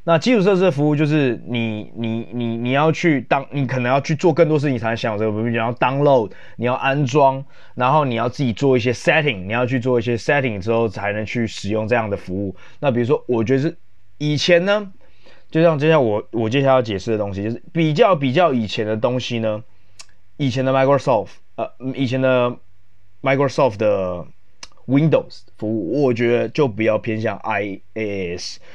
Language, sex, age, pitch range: Chinese, male, 20-39, 110-140 Hz